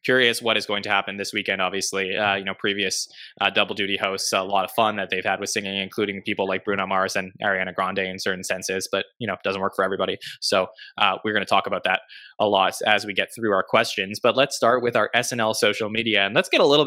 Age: 20-39